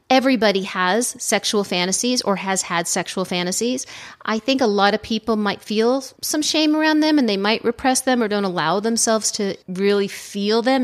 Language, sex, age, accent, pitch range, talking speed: English, female, 40-59, American, 185-235 Hz, 190 wpm